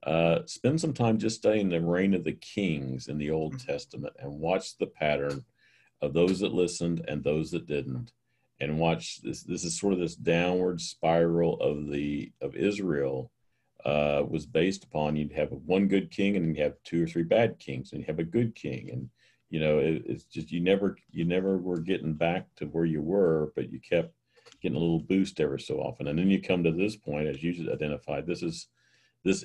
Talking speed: 215 wpm